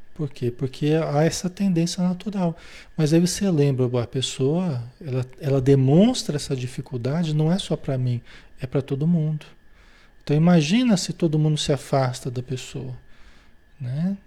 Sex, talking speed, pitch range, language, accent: male, 155 wpm, 130-180 Hz, Portuguese, Brazilian